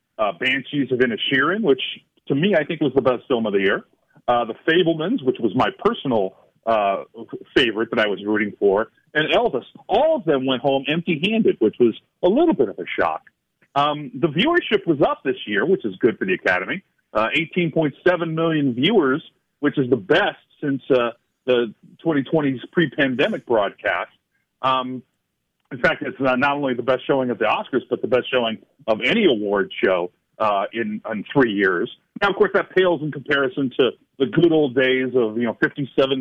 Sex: male